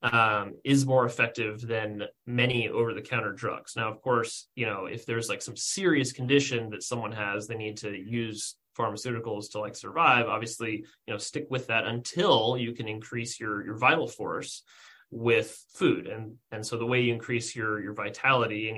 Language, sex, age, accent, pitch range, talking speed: English, male, 30-49, American, 110-120 Hz, 180 wpm